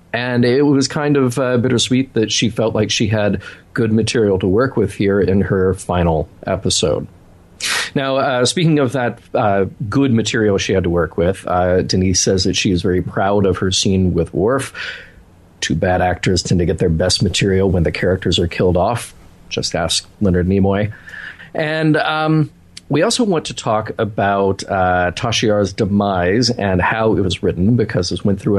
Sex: male